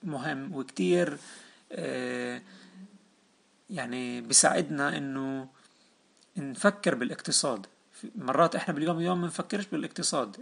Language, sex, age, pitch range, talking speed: Arabic, male, 30-49, 130-185 Hz, 75 wpm